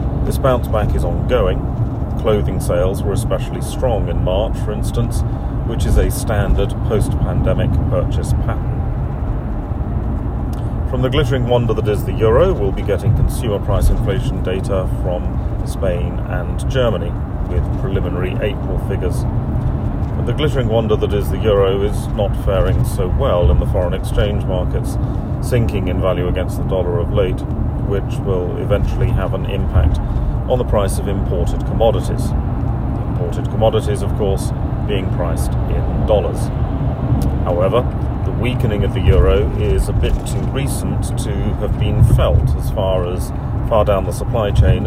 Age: 40-59